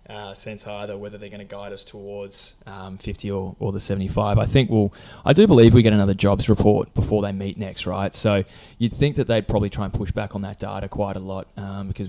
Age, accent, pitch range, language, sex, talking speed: 20-39, Australian, 95-110 Hz, English, male, 250 wpm